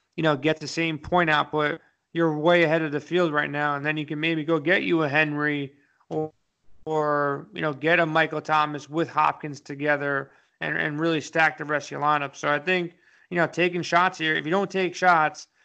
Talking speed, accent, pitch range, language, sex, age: 225 wpm, American, 150-170 Hz, English, male, 30-49